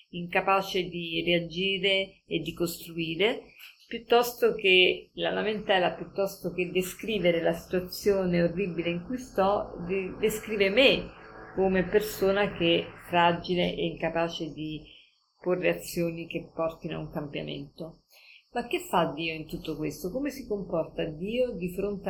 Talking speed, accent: 135 wpm, native